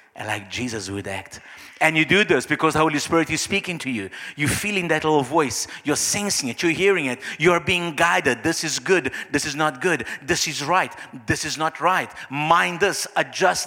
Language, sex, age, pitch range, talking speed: English, male, 50-69, 170-265 Hz, 205 wpm